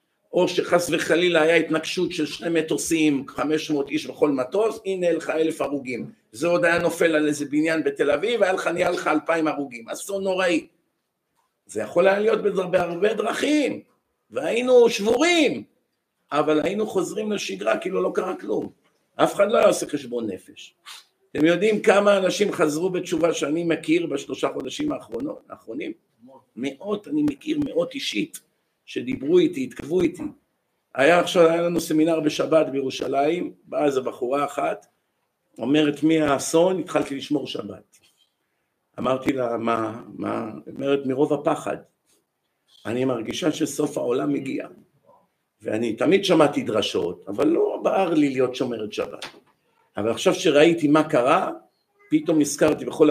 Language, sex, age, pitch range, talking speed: Hebrew, male, 50-69, 150-205 Hz, 140 wpm